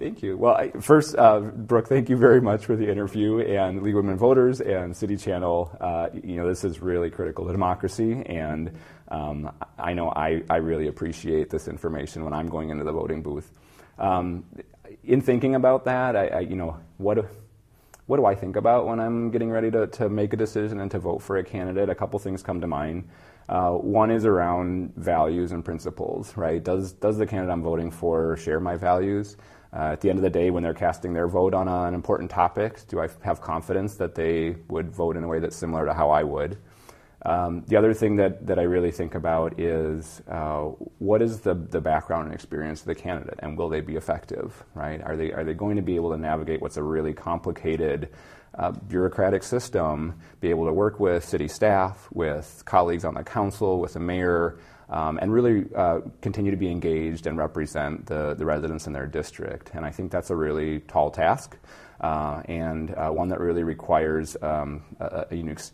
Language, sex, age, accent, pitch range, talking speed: English, male, 30-49, American, 80-100 Hz, 210 wpm